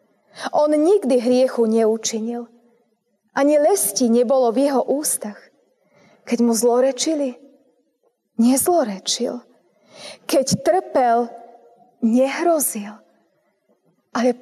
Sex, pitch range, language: female, 225-275 Hz, Slovak